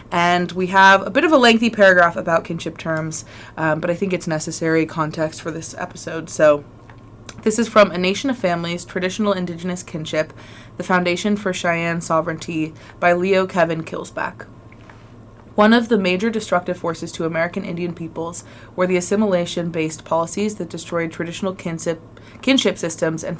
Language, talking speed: English, 160 wpm